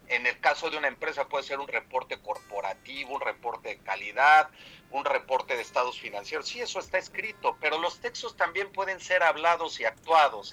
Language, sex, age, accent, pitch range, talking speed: Spanish, male, 40-59, Mexican, 140-190 Hz, 190 wpm